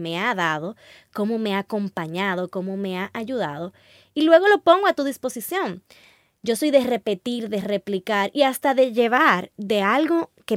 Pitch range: 190-255 Hz